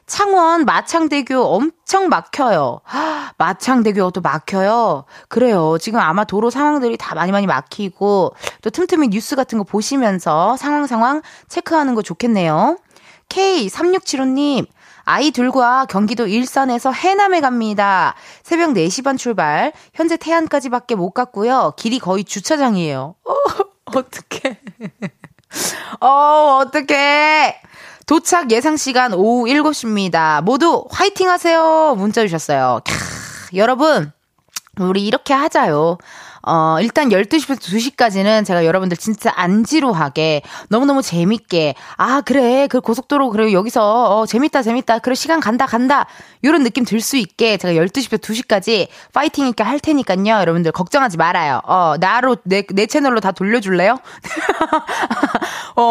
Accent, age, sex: native, 20-39, female